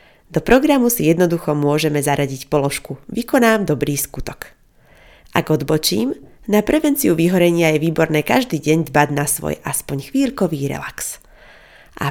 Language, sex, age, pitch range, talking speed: Slovak, female, 30-49, 140-205 Hz, 130 wpm